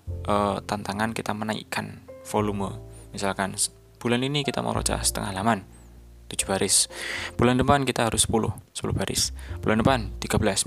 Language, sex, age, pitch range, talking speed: Indonesian, male, 20-39, 90-120 Hz, 135 wpm